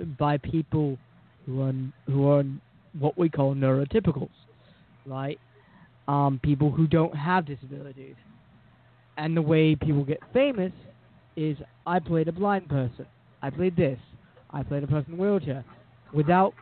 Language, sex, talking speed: English, male, 140 wpm